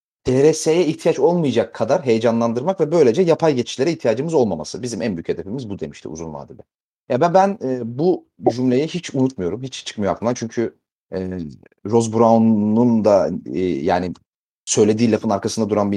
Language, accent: Turkish, native